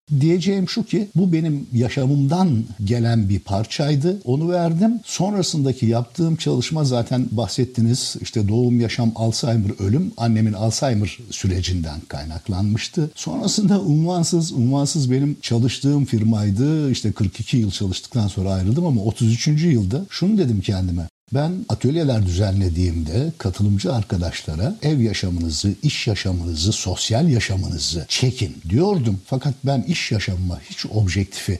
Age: 60-79